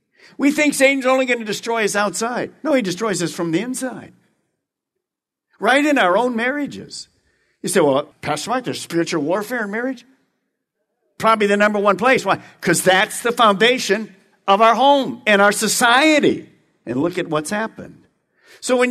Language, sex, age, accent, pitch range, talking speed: English, male, 50-69, American, 170-240 Hz, 170 wpm